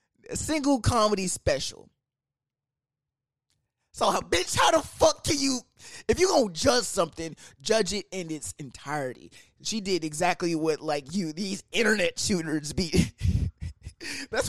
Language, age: English, 20-39